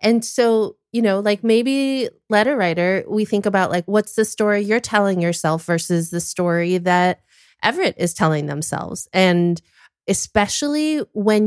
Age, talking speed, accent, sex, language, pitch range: 30-49, 150 wpm, American, female, English, 180-225 Hz